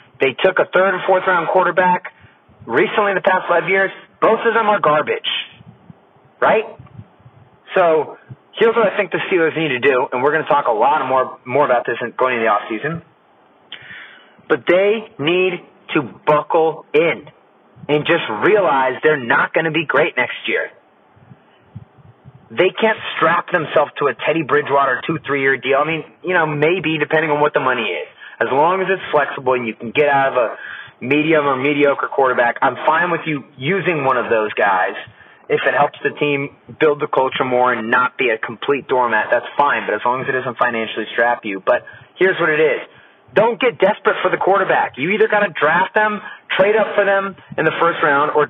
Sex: male